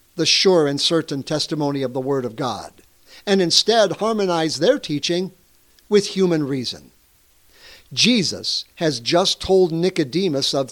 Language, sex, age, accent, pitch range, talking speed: English, male, 60-79, American, 150-220 Hz, 135 wpm